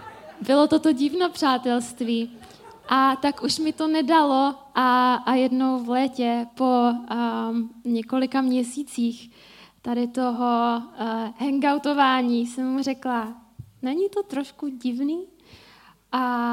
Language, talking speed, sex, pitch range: Czech, 110 wpm, female, 235-270 Hz